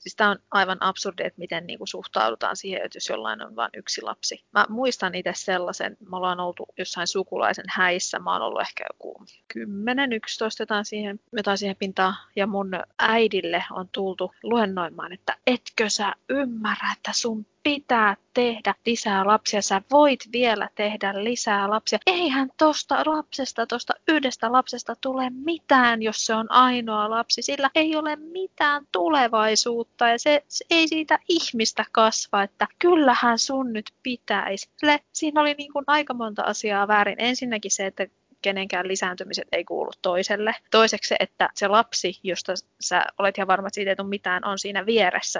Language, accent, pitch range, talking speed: Finnish, native, 195-255 Hz, 160 wpm